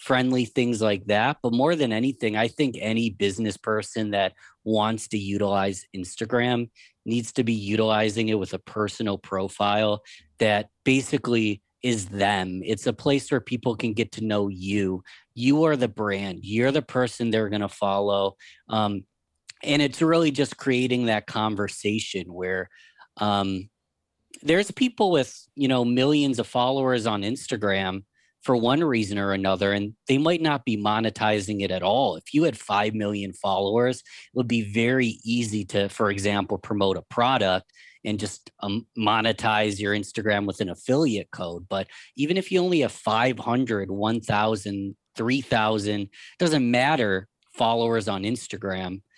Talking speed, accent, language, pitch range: 155 wpm, American, English, 100-125 Hz